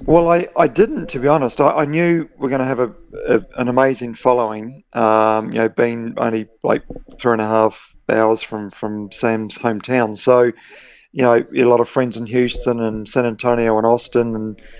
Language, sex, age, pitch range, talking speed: English, male, 30-49, 110-125 Hz, 205 wpm